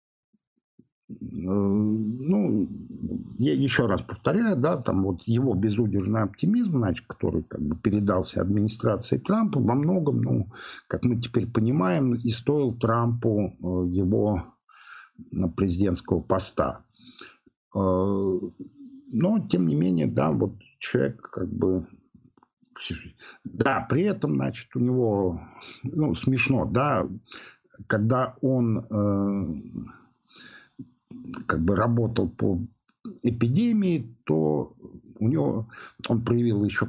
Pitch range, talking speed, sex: 95-130 Hz, 100 wpm, male